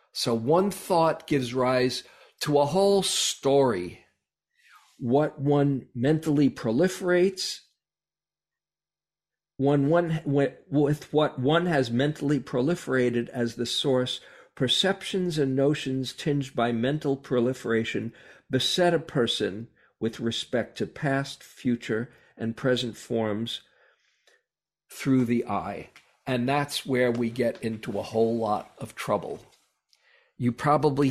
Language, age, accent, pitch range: English, 50-69, American, 120-150 Hz